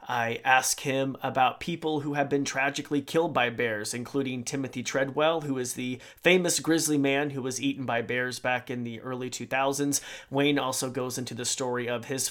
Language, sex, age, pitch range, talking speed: English, male, 30-49, 120-140 Hz, 190 wpm